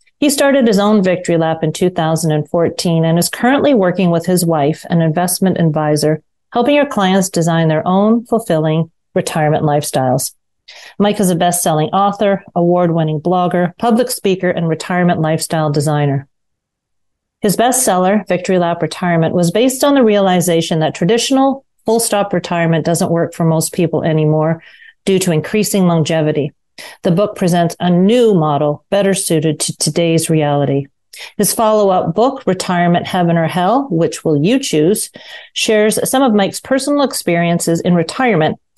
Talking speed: 145 wpm